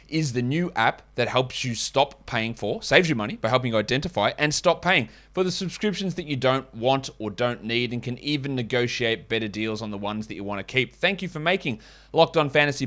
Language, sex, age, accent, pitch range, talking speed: English, male, 20-39, Australian, 115-145 Hz, 240 wpm